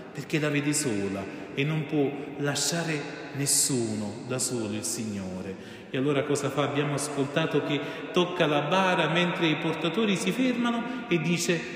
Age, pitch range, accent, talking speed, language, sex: 30-49, 145-180 Hz, native, 155 wpm, Italian, male